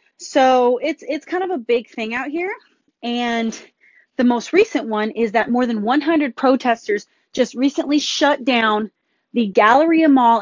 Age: 30-49